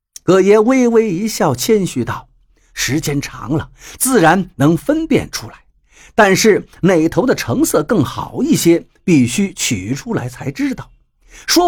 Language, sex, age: Chinese, male, 50-69